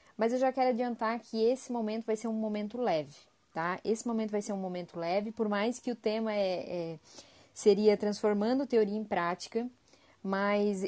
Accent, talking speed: Brazilian, 175 wpm